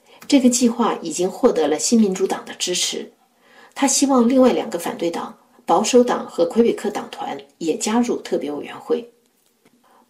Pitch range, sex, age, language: 225-255 Hz, female, 50-69, Chinese